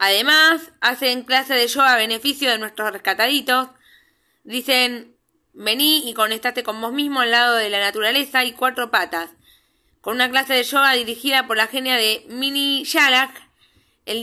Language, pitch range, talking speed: Spanish, 225-275 Hz, 160 wpm